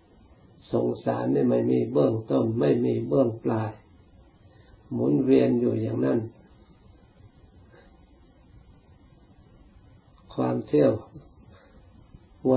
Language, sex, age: Thai, male, 60-79